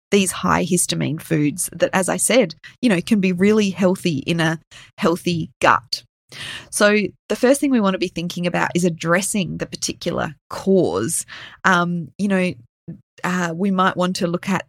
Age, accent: 20-39, Australian